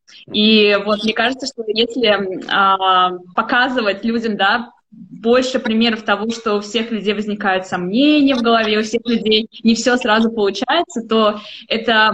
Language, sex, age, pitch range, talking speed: Russian, female, 20-39, 200-240 Hz, 150 wpm